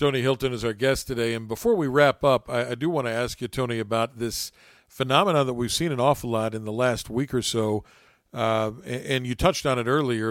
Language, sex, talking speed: English, male, 245 wpm